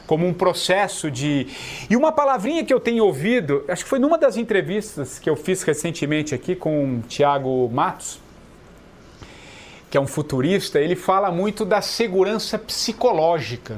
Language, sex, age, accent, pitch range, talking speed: English, male, 40-59, Brazilian, 175-245 Hz, 155 wpm